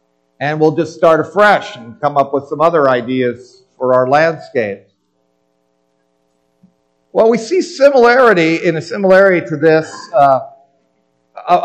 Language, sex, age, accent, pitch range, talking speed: English, male, 50-69, American, 130-215 Hz, 130 wpm